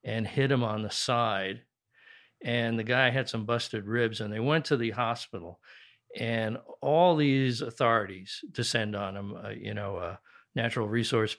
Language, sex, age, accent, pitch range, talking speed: English, male, 50-69, American, 105-125 Hz, 170 wpm